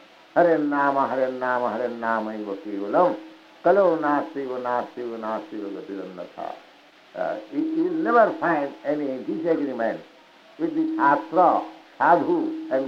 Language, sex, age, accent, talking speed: English, male, 60-79, Indian, 115 wpm